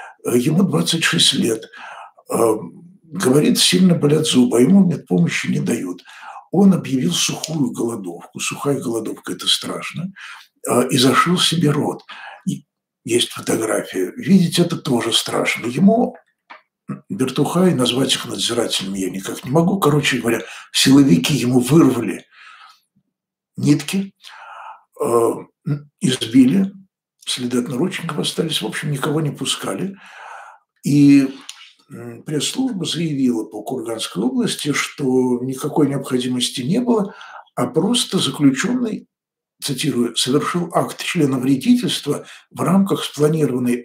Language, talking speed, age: Russian, 105 wpm, 60-79